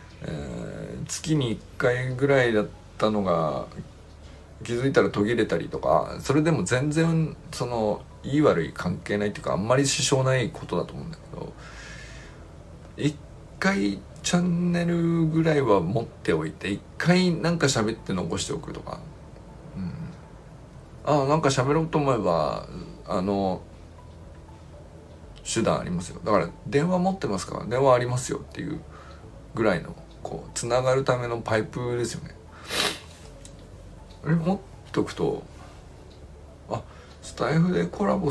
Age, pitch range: 50-69, 90-145 Hz